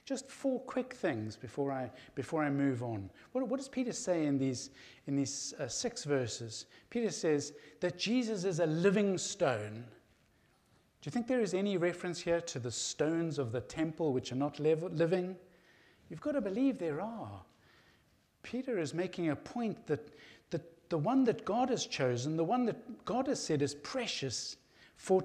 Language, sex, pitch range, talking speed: English, male, 140-200 Hz, 175 wpm